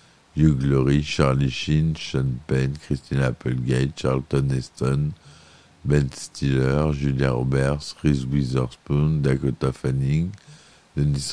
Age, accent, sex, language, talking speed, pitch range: 60-79, French, male, French, 100 wpm, 70-80 Hz